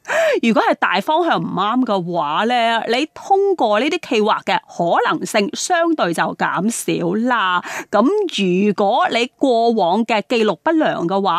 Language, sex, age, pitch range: Chinese, female, 30-49, 200-285 Hz